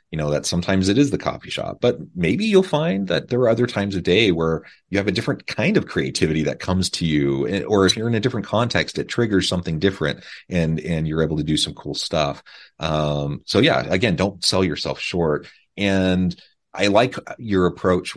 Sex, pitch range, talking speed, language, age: male, 80-100 Hz, 220 wpm, English, 30-49